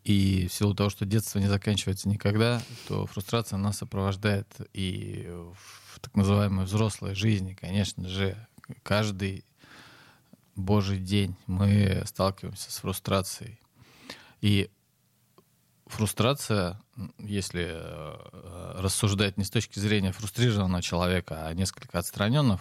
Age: 20-39